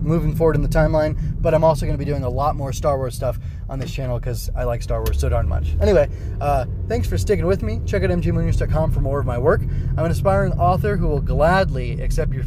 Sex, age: male, 20-39